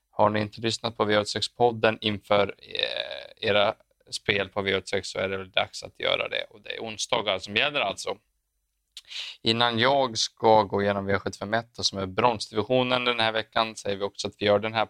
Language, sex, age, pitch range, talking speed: Swedish, male, 20-39, 100-115 Hz, 195 wpm